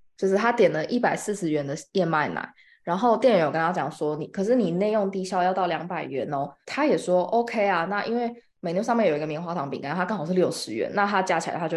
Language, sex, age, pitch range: Chinese, female, 20-39, 170-235 Hz